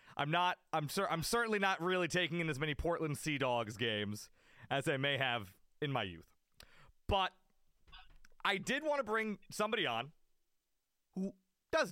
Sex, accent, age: male, American, 30-49